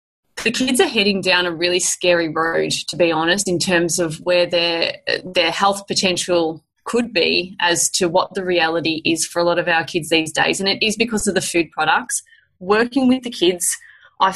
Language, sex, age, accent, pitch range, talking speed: English, female, 20-39, Australian, 170-195 Hz, 205 wpm